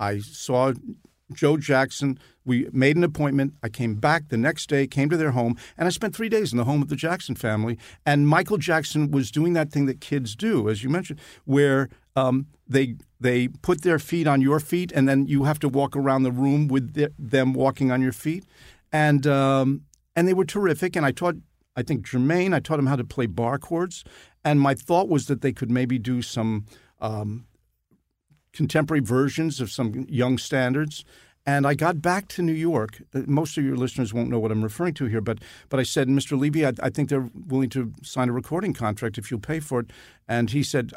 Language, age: English, 50-69